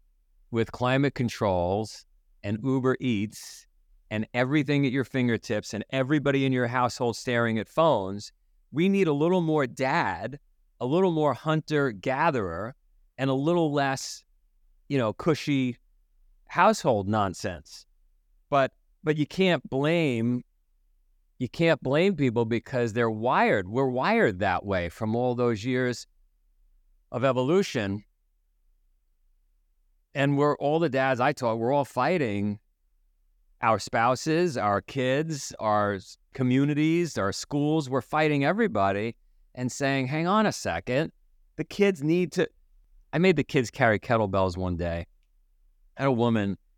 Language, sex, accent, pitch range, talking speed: English, male, American, 95-145 Hz, 130 wpm